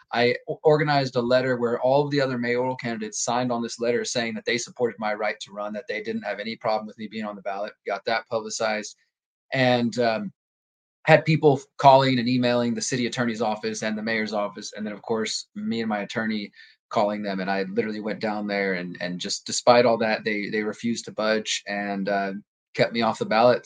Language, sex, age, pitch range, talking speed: English, male, 20-39, 110-130 Hz, 225 wpm